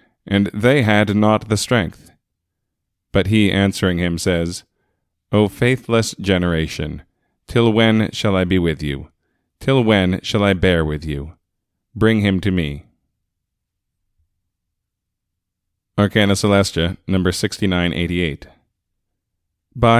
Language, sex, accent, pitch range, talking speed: English, male, American, 90-110 Hz, 105 wpm